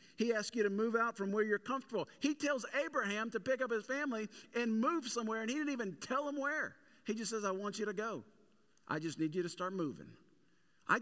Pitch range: 165-215 Hz